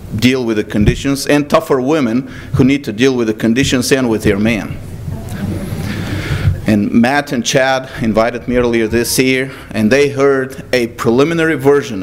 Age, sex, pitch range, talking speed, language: 40-59, male, 105-130 Hz, 165 wpm, English